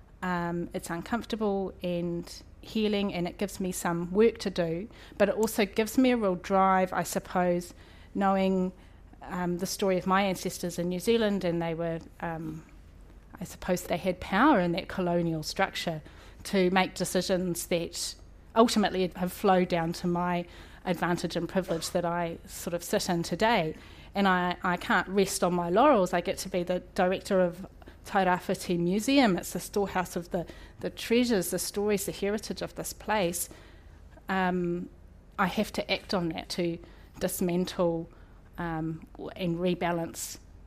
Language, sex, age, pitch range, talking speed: English, female, 30-49, 175-195 Hz, 160 wpm